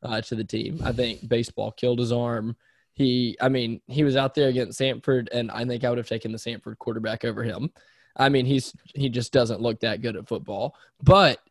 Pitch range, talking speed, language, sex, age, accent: 115-135 Hz, 225 wpm, English, male, 10-29, American